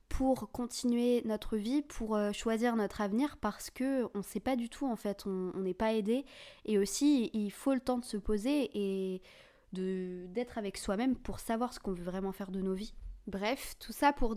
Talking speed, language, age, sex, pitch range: 205 wpm, French, 20-39, female, 205-245 Hz